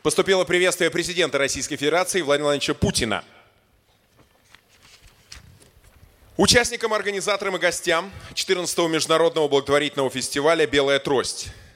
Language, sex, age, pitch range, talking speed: Russian, male, 20-39, 130-170 Hz, 90 wpm